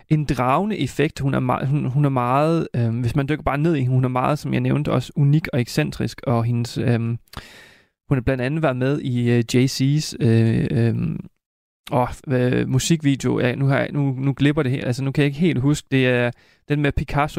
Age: 30-49